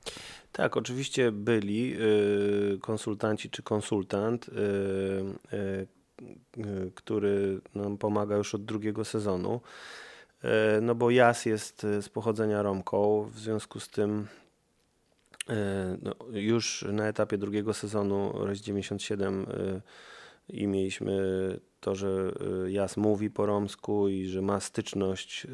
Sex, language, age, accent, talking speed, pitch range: male, Polish, 30-49, native, 105 wpm, 95-110 Hz